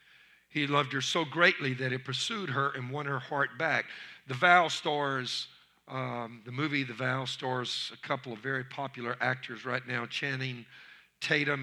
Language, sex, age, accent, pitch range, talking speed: English, male, 50-69, American, 120-150 Hz, 170 wpm